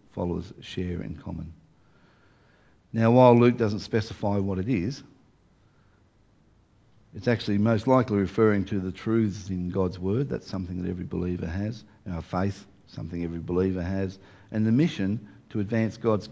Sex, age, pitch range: male, 50-69, 95-120 Hz